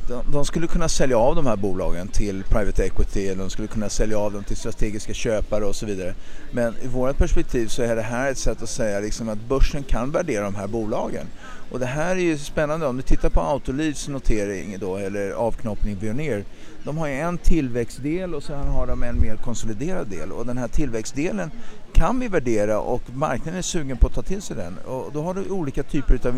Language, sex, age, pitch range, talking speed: Swedish, male, 50-69, 110-155 Hz, 220 wpm